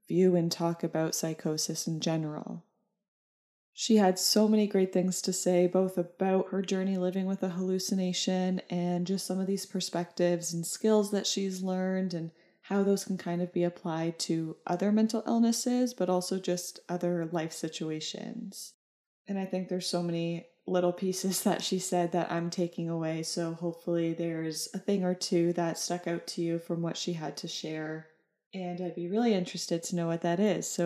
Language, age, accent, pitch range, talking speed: English, 20-39, American, 170-195 Hz, 185 wpm